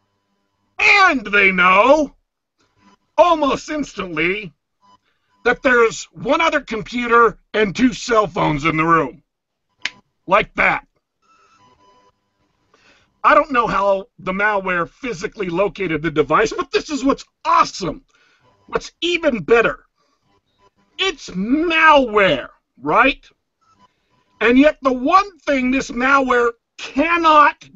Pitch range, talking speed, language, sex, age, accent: 195-315 Hz, 105 wpm, English, male, 50-69, American